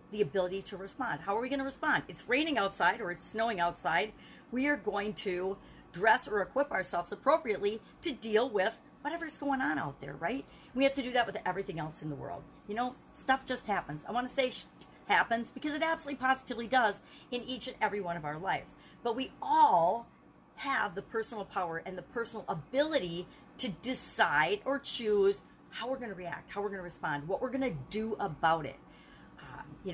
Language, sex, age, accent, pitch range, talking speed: English, female, 40-59, American, 180-255 Hz, 205 wpm